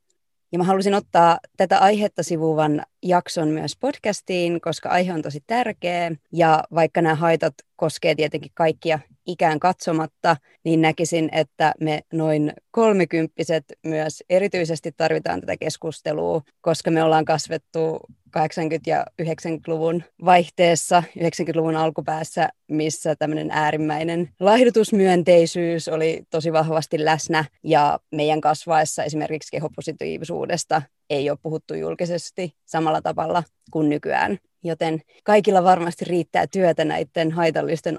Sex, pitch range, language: female, 160-185 Hz, Finnish